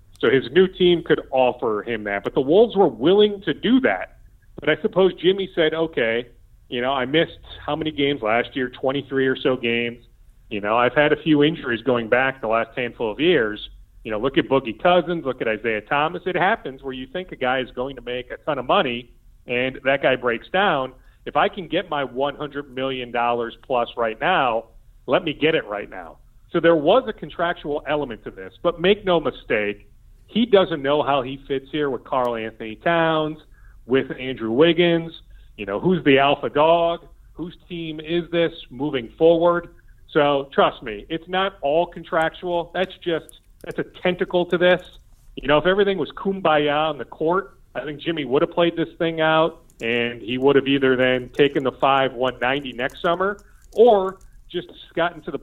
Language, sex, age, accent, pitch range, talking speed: English, male, 40-59, American, 125-170 Hz, 200 wpm